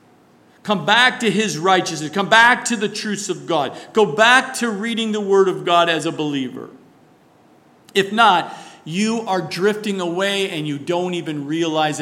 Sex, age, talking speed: male, 50-69, 170 wpm